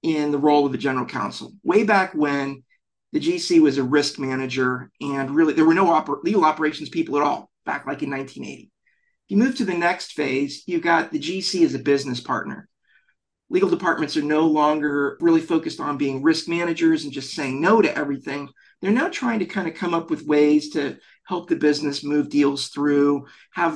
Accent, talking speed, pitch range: American, 200 wpm, 145-210 Hz